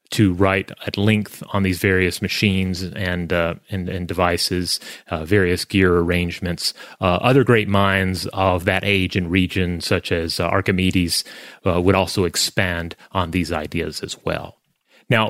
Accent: American